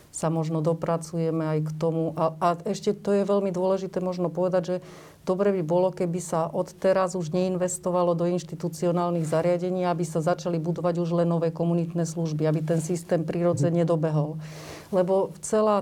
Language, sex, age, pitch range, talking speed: Slovak, female, 40-59, 170-185 Hz, 170 wpm